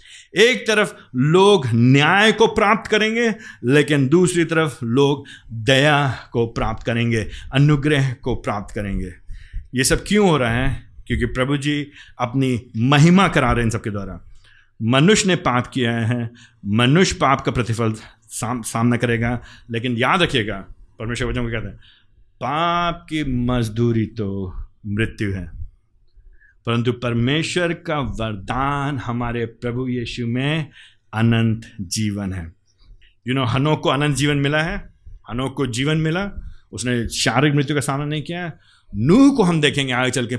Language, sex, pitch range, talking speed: Hindi, male, 110-150 Hz, 145 wpm